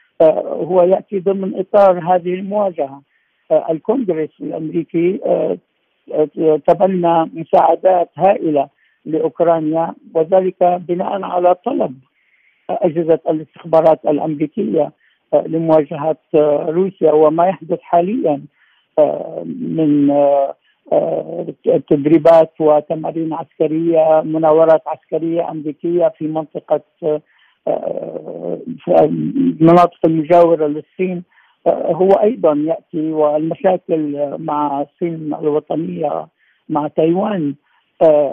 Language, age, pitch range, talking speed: Arabic, 60-79, 155-180 Hz, 70 wpm